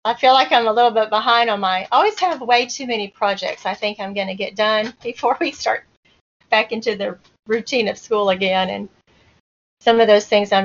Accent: American